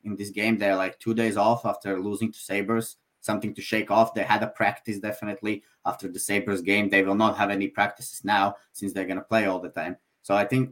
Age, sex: 30-49, male